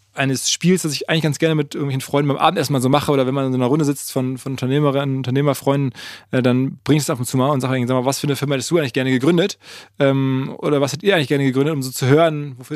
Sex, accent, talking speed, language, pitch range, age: male, German, 305 wpm, German, 130-155 Hz, 20-39